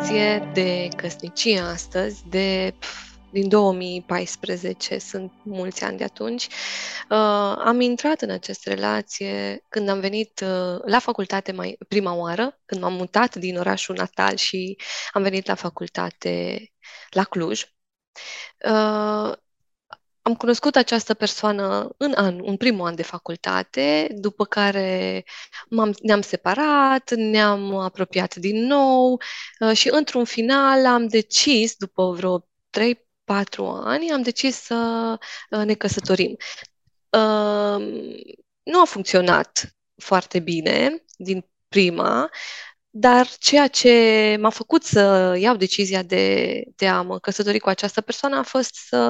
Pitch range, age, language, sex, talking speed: 185-230 Hz, 20-39, Romanian, female, 125 wpm